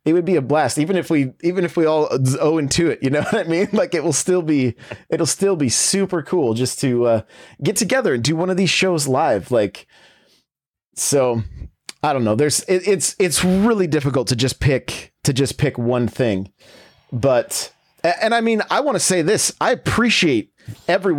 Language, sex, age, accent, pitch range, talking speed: English, male, 30-49, American, 135-190 Hz, 205 wpm